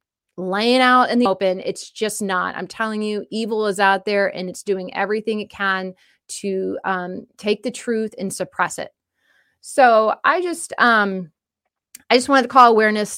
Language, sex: English, female